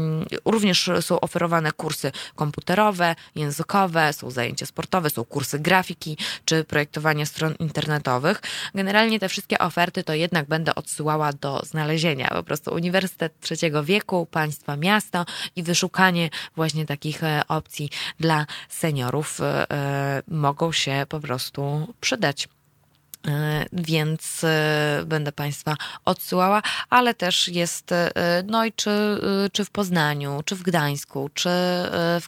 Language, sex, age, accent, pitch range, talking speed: Polish, female, 20-39, native, 150-190 Hz, 115 wpm